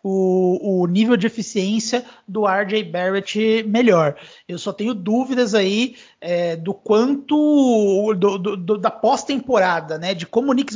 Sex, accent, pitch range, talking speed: male, Brazilian, 180-225 Hz, 150 wpm